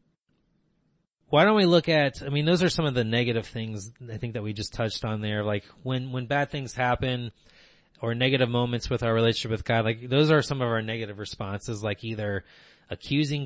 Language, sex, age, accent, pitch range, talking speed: English, male, 20-39, American, 110-135 Hz, 210 wpm